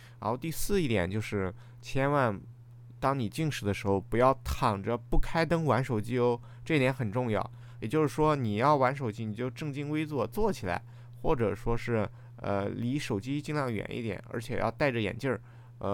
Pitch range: 110-135 Hz